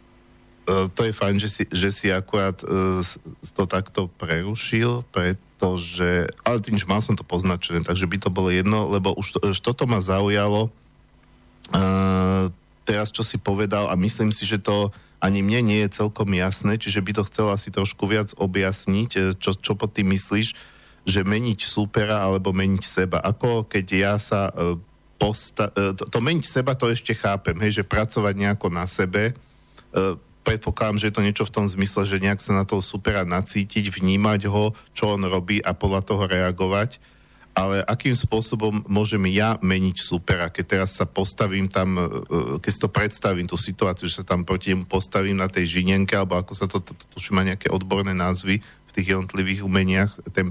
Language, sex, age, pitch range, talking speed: Slovak, male, 40-59, 95-105 Hz, 180 wpm